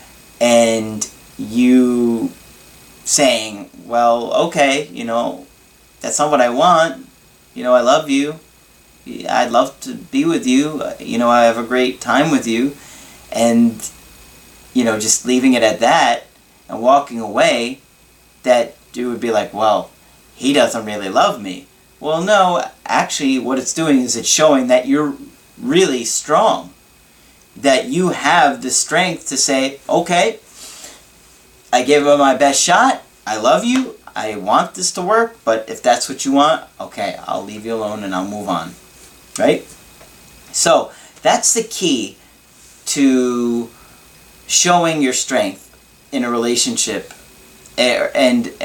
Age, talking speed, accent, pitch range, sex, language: 30-49, 145 wpm, American, 120-170 Hz, male, English